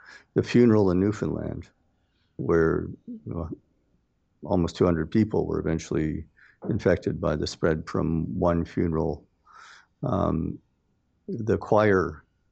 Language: English